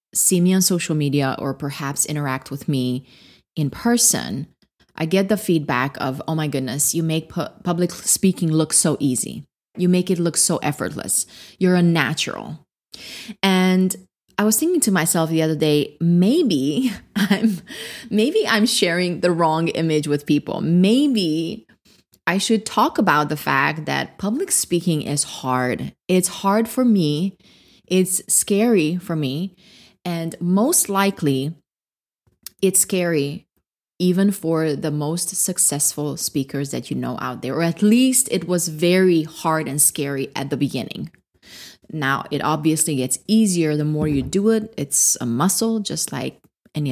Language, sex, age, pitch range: English, female, 20-39, 150-200 Hz